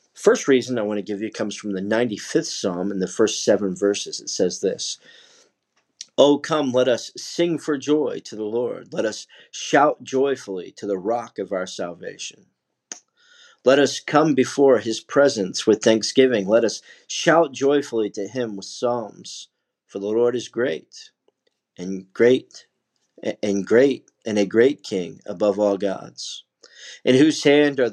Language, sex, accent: English, male, American